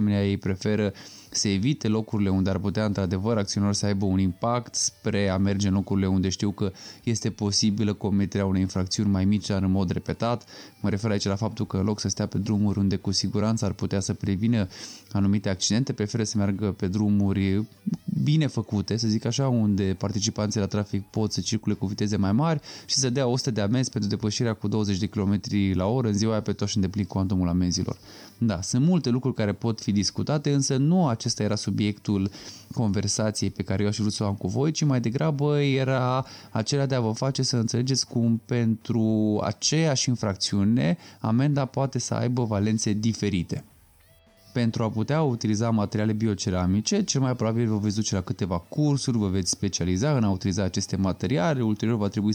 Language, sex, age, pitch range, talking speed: Romanian, male, 20-39, 100-125 Hz, 195 wpm